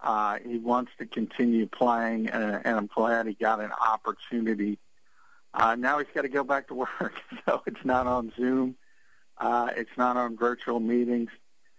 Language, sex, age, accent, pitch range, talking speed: English, male, 50-69, American, 110-125 Hz, 175 wpm